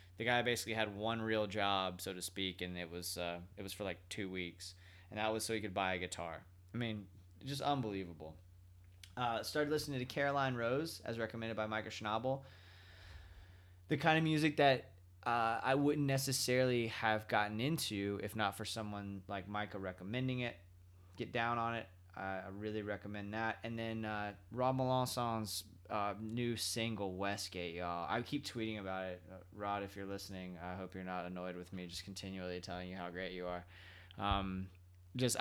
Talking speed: 185 wpm